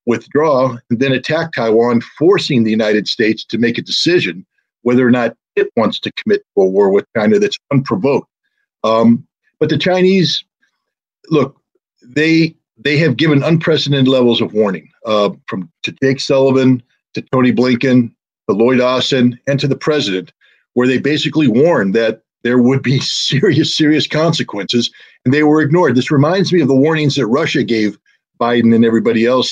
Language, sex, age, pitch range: English, male, 50-69, 120-155 Hz